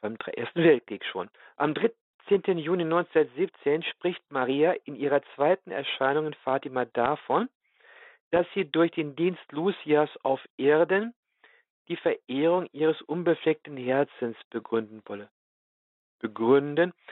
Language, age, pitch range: German, 50-69, 130-175 Hz